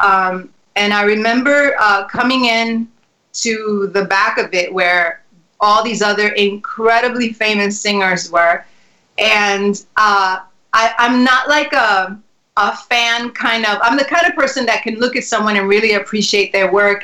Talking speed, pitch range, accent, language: 160 wpm, 205-245 Hz, American, English